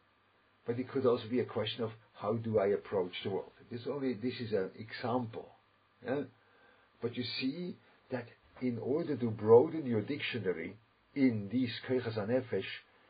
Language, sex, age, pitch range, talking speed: English, male, 50-69, 110-135 Hz, 160 wpm